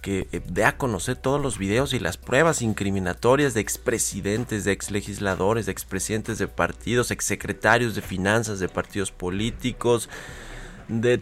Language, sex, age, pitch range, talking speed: Spanish, male, 30-49, 95-115 Hz, 140 wpm